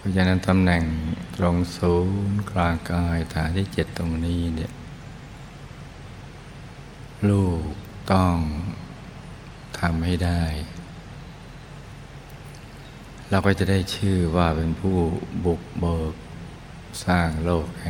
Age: 60-79